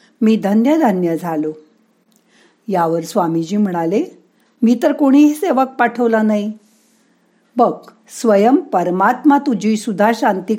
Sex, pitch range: female, 185-250 Hz